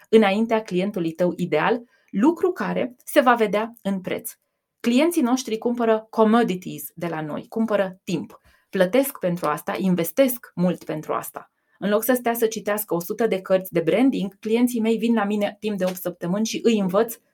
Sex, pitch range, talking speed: female, 190-245 Hz, 175 wpm